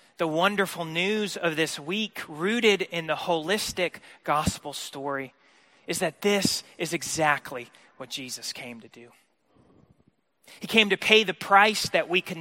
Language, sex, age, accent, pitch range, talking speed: English, male, 30-49, American, 140-195 Hz, 150 wpm